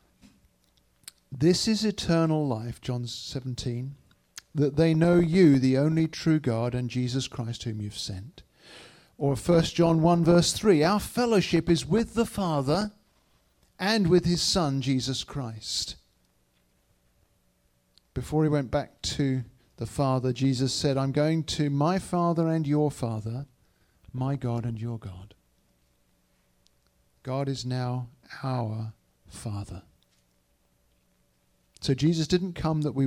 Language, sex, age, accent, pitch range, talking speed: English, male, 50-69, British, 110-155 Hz, 130 wpm